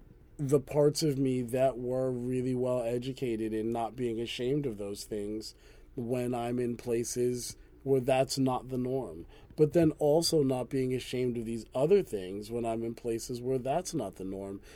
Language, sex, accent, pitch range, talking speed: English, male, American, 120-140 Hz, 180 wpm